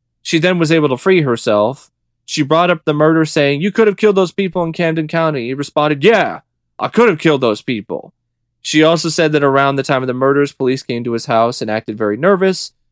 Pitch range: 115-150 Hz